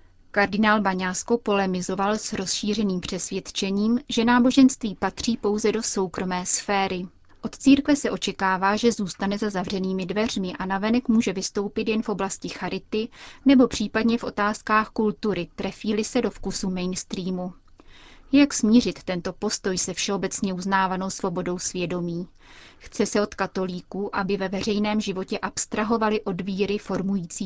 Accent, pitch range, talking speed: native, 185-220 Hz, 135 wpm